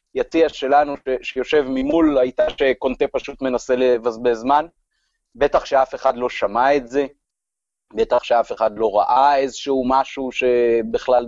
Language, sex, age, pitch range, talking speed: Hebrew, male, 30-49, 120-165 Hz, 135 wpm